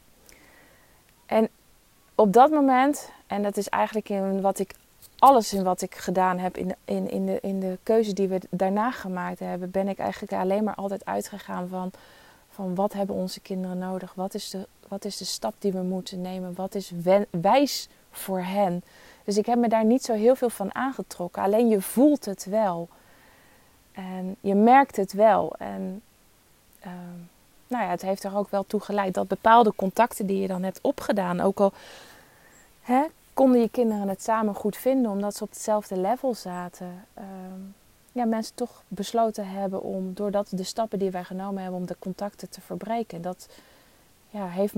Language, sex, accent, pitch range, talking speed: Dutch, female, Dutch, 185-220 Hz, 180 wpm